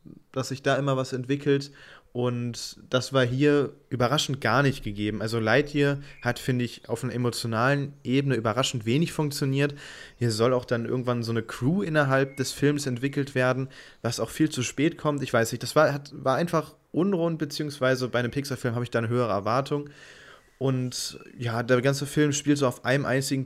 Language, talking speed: German, 185 wpm